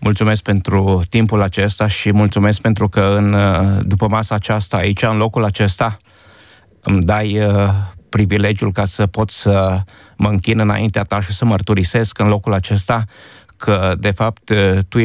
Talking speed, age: 150 wpm, 30-49